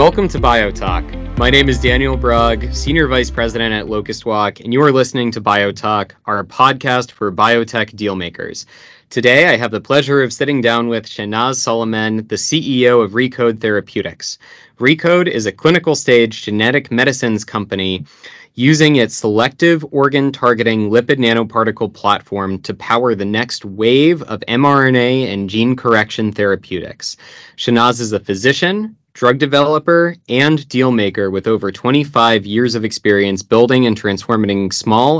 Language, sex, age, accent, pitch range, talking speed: English, male, 20-39, American, 105-130 Hz, 150 wpm